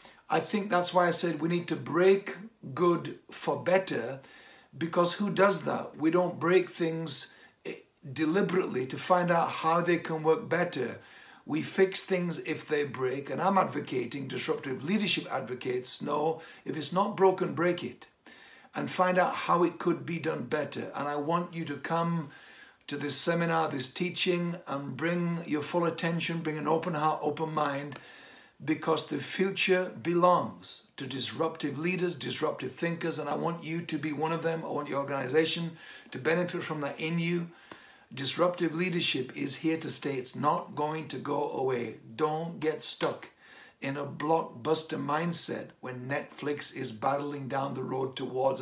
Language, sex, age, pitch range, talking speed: English, male, 60-79, 145-175 Hz, 165 wpm